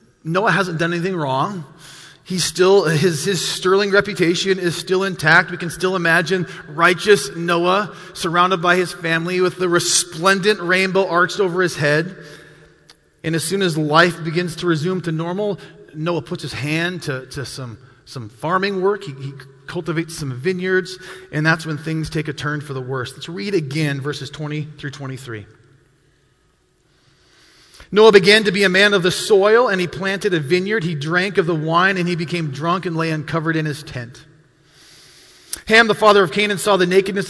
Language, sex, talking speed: English, male, 180 wpm